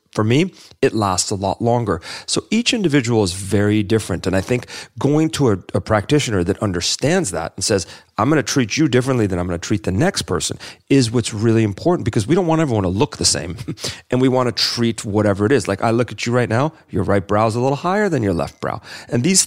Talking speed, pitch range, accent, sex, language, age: 240 wpm, 100-135 Hz, American, male, English, 40-59